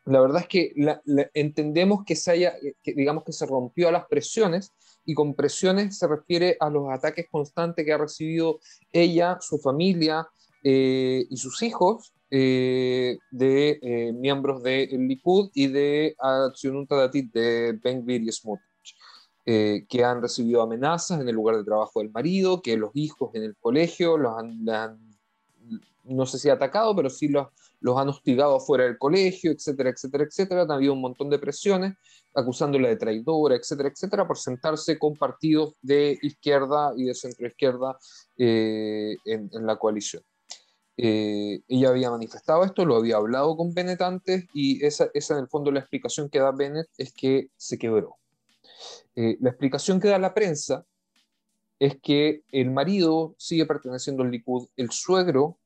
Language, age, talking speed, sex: Spanish, 30-49, 170 wpm, male